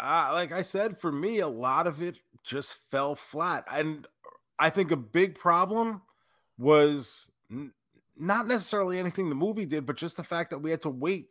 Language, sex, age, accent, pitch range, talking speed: English, male, 30-49, American, 145-180 Hz, 190 wpm